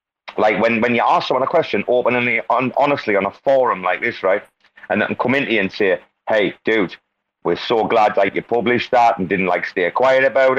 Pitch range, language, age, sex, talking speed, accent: 100-130 Hz, English, 30-49, male, 225 wpm, British